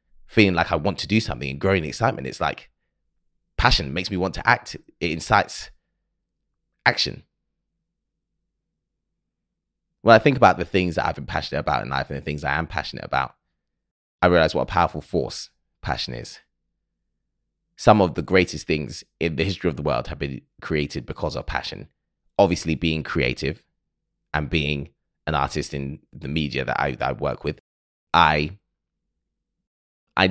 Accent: British